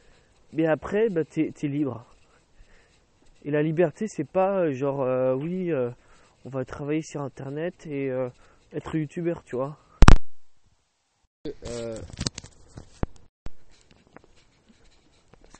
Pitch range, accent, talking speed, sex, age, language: 130-165 Hz, French, 95 wpm, male, 20-39, English